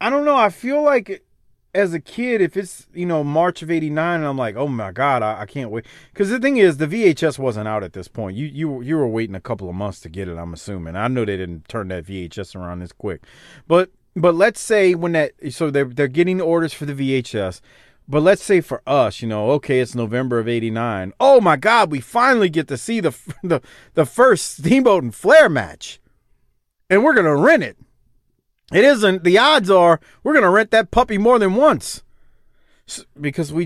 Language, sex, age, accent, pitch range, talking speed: English, male, 30-49, American, 115-190 Hz, 225 wpm